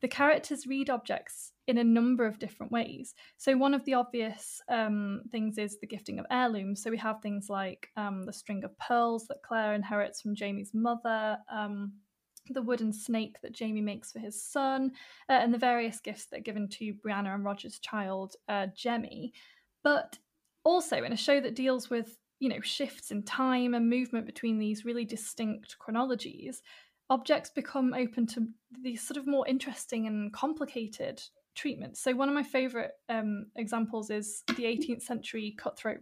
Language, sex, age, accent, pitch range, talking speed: English, female, 10-29, British, 215-255 Hz, 180 wpm